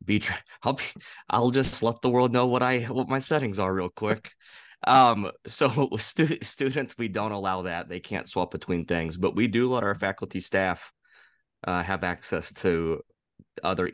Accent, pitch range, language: American, 90-110 Hz, English